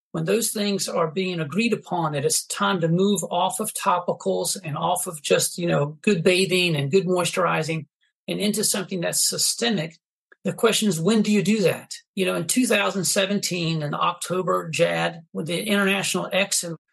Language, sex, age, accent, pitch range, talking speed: English, male, 40-59, American, 165-200 Hz, 170 wpm